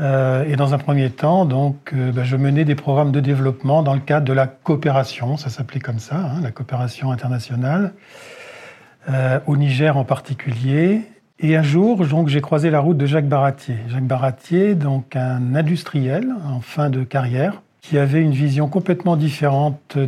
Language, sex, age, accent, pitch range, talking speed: English, male, 40-59, French, 135-160 Hz, 180 wpm